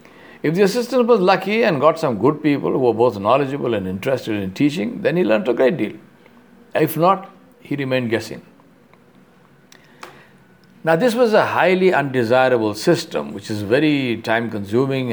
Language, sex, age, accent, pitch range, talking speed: English, male, 60-79, Indian, 110-160 Hz, 160 wpm